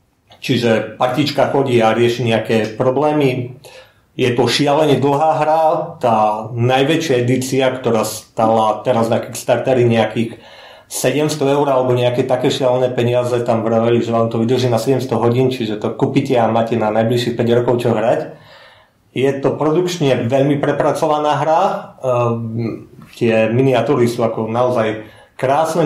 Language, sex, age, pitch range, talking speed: Slovak, male, 40-59, 120-140 Hz, 140 wpm